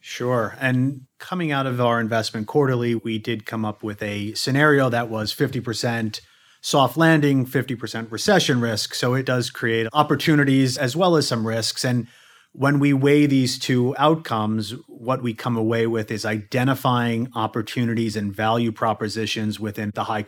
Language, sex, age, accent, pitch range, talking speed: English, male, 30-49, American, 110-135 Hz, 160 wpm